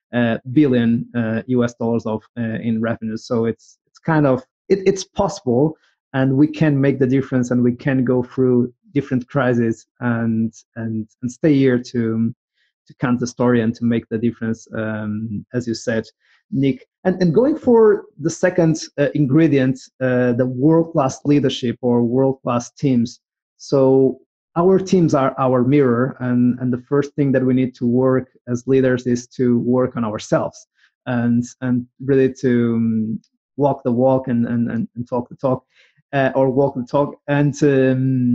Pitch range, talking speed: 120-150 Hz, 170 wpm